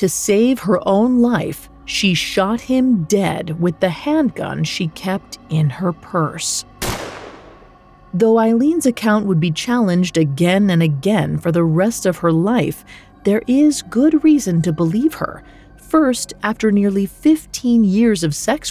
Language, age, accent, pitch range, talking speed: English, 40-59, American, 165-235 Hz, 150 wpm